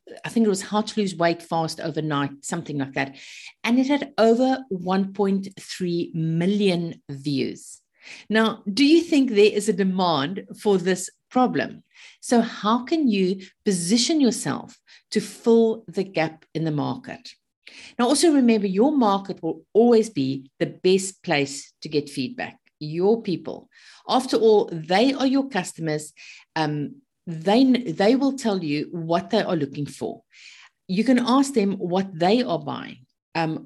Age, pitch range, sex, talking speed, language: 50-69, 160-225 Hz, female, 155 wpm, English